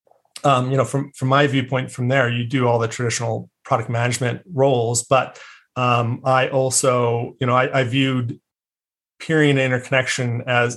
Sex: male